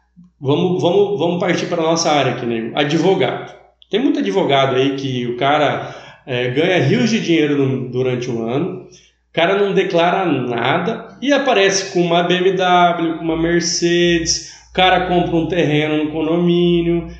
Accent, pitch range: Brazilian, 140-180 Hz